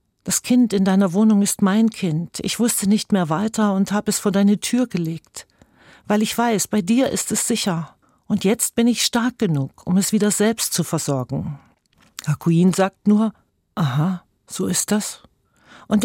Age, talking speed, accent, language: 40-59, 180 wpm, German, German